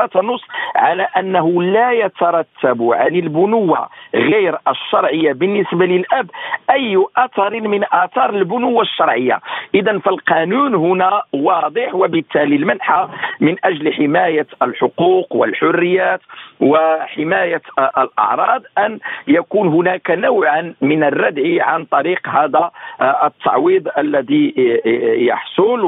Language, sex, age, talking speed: Arabic, male, 50-69, 95 wpm